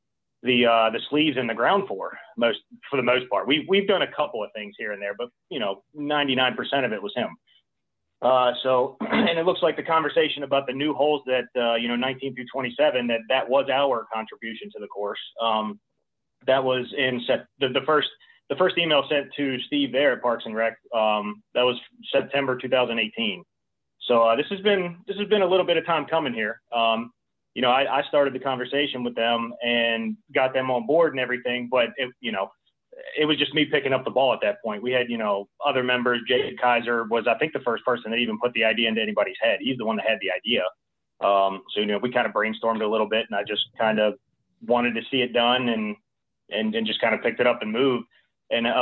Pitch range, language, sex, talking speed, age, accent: 115-145 Hz, English, male, 235 wpm, 30-49, American